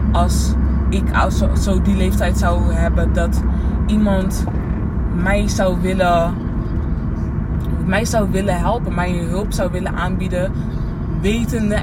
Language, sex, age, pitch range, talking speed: Dutch, female, 20-39, 75-95 Hz, 110 wpm